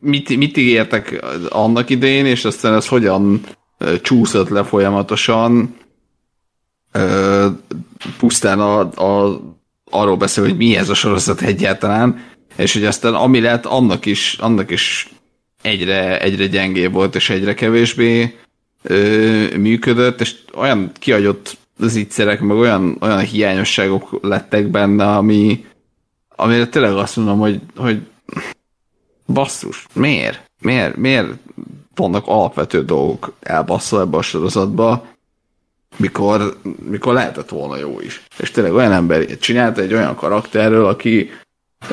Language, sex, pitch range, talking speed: Hungarian, male, 100-120 Hz, 125 wpm